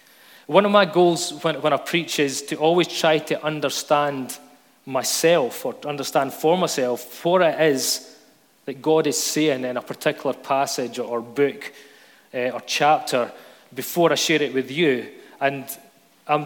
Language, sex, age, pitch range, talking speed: English, male, 30-49, 135-155 Hz, 160 wpm